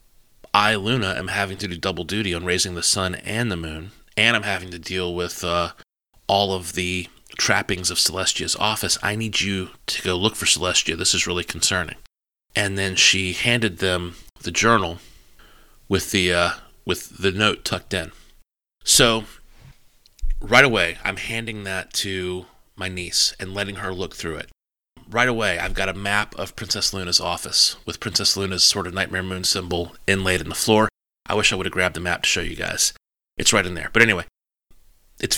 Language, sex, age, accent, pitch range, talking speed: English, male, 30-49, American, 90-105 Hz, 190 wpm